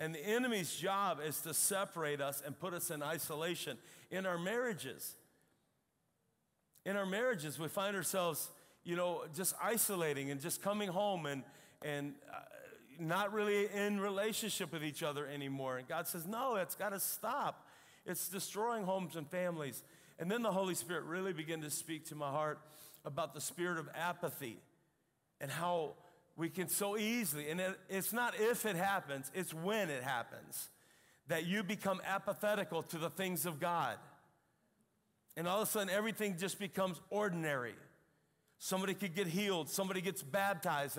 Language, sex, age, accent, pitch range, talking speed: English, male, 40-59, American, 165-205 Hz, 165 wpm